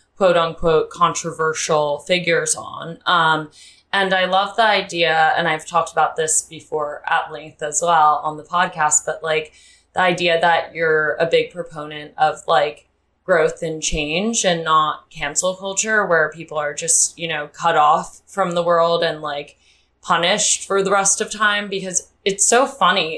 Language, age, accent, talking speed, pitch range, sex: English, 20-39, American, 170 wpm, 155-190 Hz, female